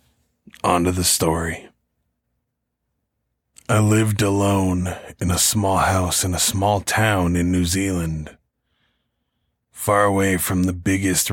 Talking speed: 115 wpm